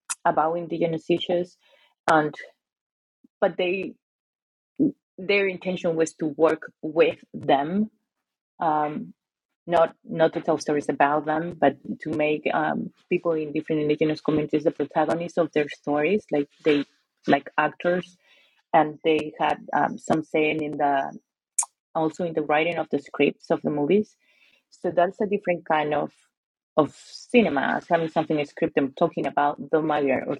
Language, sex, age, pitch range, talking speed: English, female, 30-49, 150-175 Hz, 145 wpm